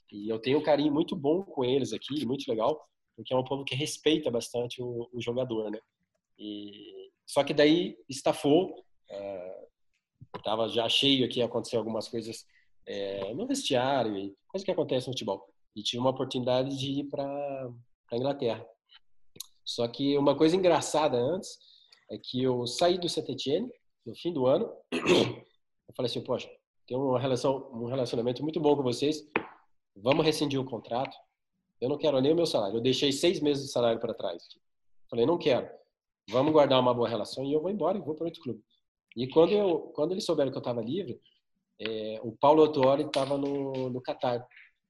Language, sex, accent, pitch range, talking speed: Portuguese, male, Brazilian, 115-150 Hz, 180 wpm